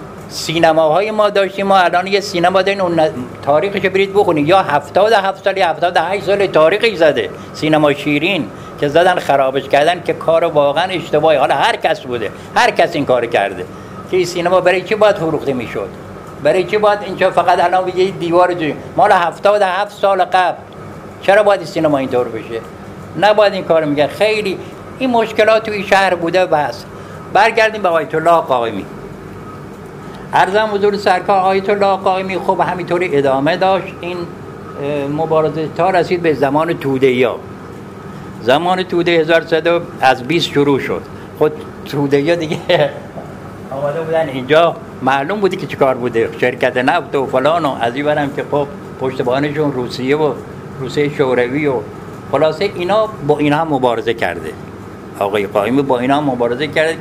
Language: Persian